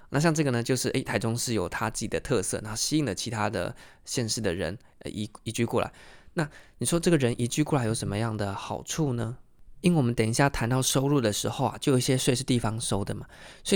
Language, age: Chinese, 20-39